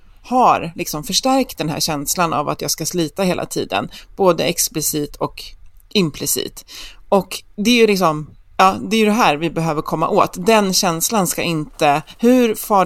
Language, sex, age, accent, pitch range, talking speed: Swedish, female, 30-49, native, 160-225 Hz, 175 wpm